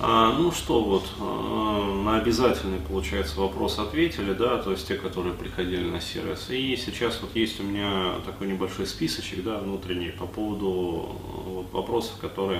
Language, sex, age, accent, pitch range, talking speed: Russian, male, 20-39, native, 95-110 Hz, 150 wpm